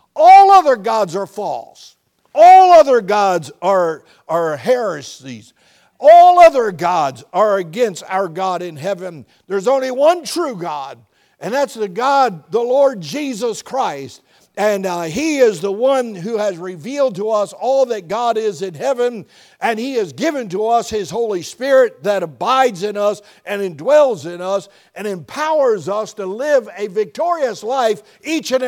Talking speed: 160 wpm